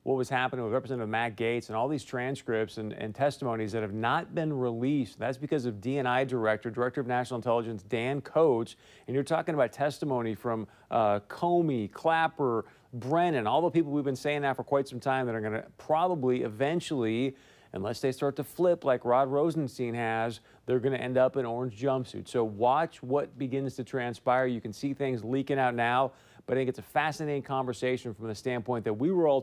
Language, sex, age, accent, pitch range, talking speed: English, male, 40-59, American, 115-140 Hz, 210 wpm